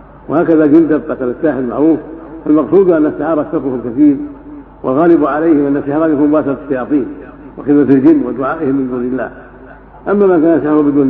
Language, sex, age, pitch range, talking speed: Arabic, male, 60-79, 130-150 Hz, 145 wpm